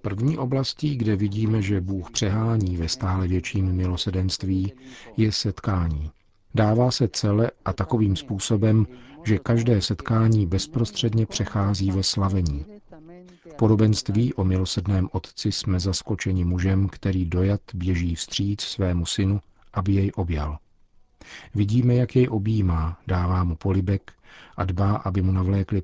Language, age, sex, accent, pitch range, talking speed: Czech, 50-69, male, native, 90-110 Hz, 130 wpm